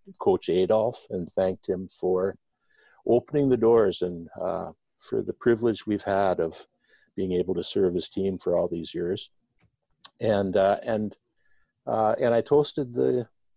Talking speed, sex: 155 wpm, male